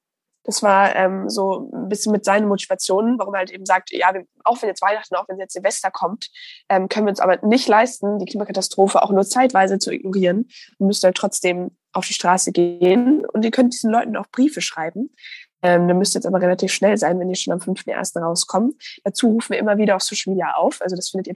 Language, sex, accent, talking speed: German, female, German, 230 wpm